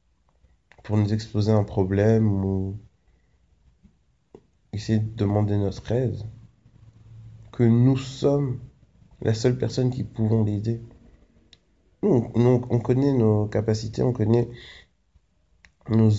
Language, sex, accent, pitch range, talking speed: French, male, French, 95-125 Hz, 110 wpm